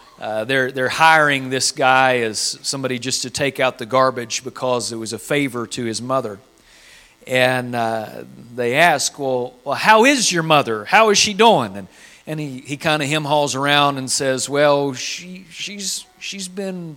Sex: male